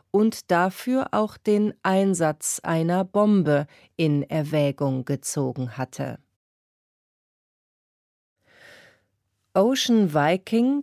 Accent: German